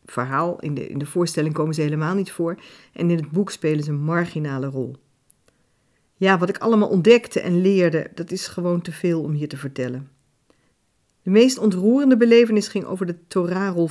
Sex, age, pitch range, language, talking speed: female, 50-69, 155-210 Hz, Dutch, 185 wpm